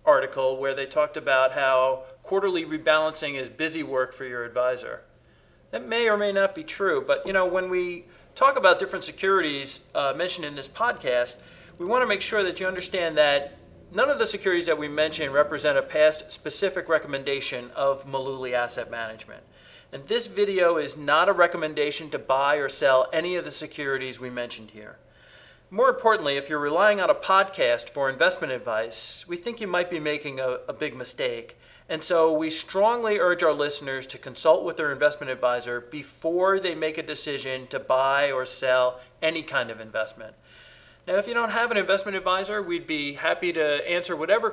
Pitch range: 135-185 Hz